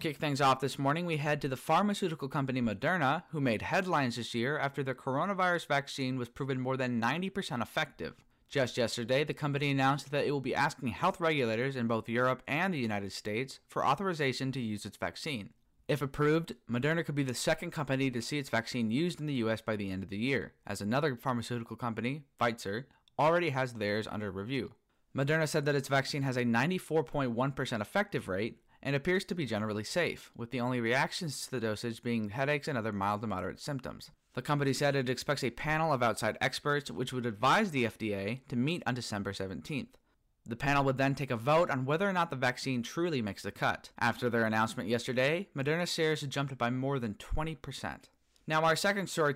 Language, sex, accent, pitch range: English, male, American, 115-150 Hz